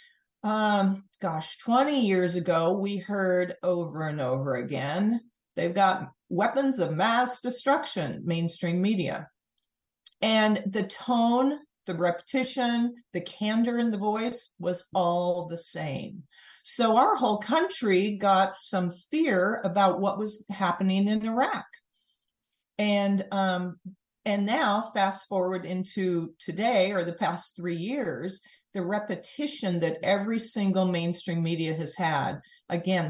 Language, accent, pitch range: English, American, 175-225 Hz